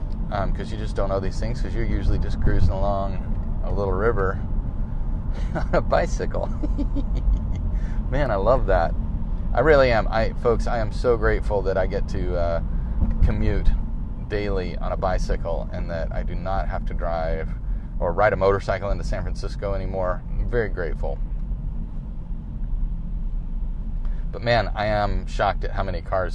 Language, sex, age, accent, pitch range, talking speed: English, male, 30-49, American, 85-115 Hz, 160 wpm